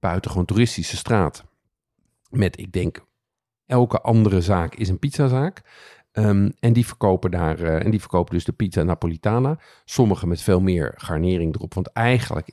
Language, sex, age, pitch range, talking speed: Dutch, male, 50-69, 90-110 Hz, 160 wpm